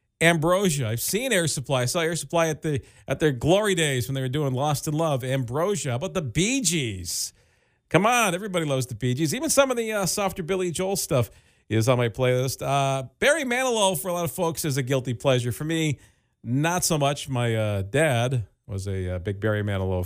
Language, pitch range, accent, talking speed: English, 125-180 Hz, American, 220 wpm